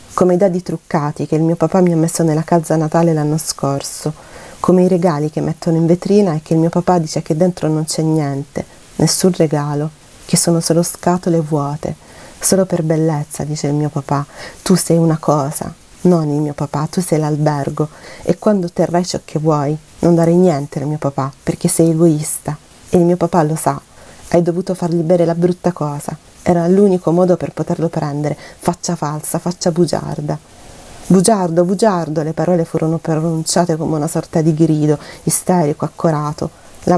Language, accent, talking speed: Italian, native, 180 wpm